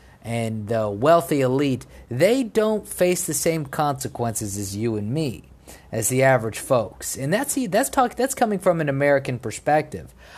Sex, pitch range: male, 120-170 Hz